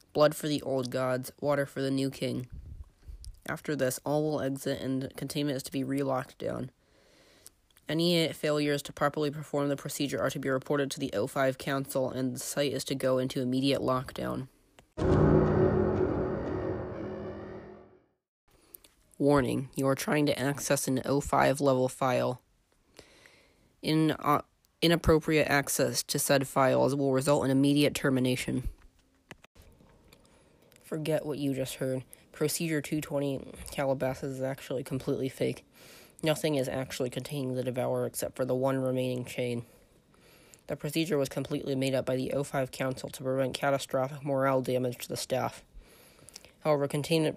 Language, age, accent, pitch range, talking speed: English, 20-39, American, 130-145 Hz, 140 wpm